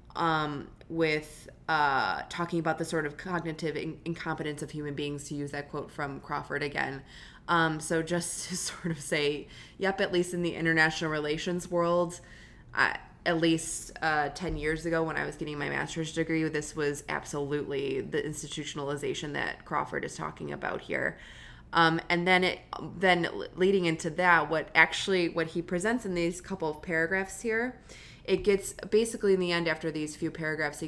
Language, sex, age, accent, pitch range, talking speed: English, female, 20-39, American, 150-175 Hz, 175 wpm